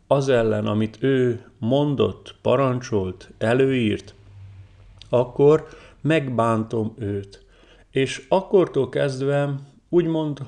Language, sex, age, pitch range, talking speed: Hungarian, male, 40-59, 110-140 Hz, 80 wpm